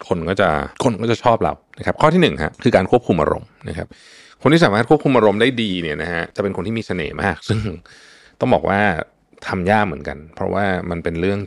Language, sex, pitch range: Thai, male, 90-120 Hz